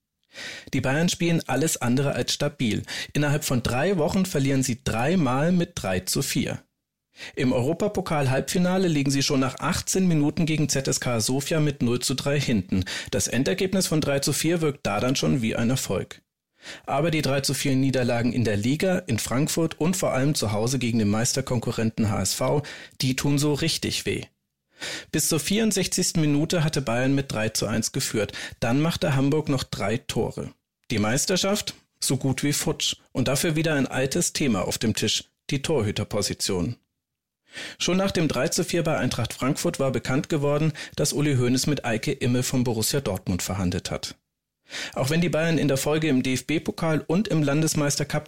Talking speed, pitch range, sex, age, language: 175 wpm, 125-160 Hz, male, 40-59, German